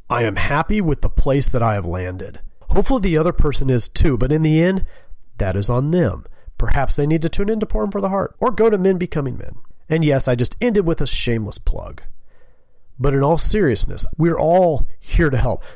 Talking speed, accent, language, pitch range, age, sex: 225 wpm, American, English, 105-145 Hz, 40-59, male